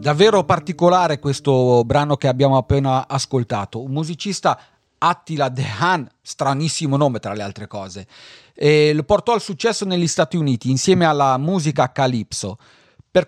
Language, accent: Italian, native